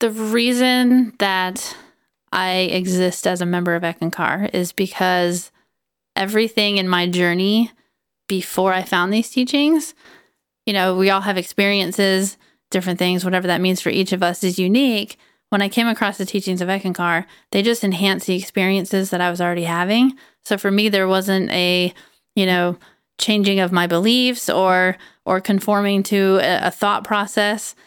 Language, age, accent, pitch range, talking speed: English, 30-49, American, 185-210 Hz, 165 wpm